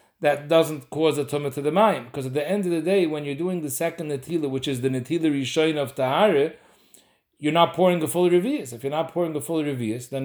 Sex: male